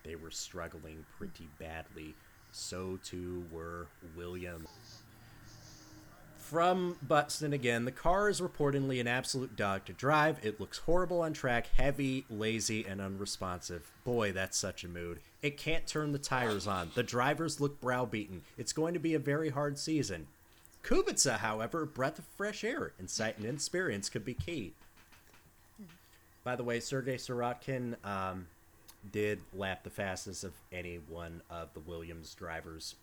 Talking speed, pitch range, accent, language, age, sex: 150 wpm, 85-125 Hz, American, English, 30-49, male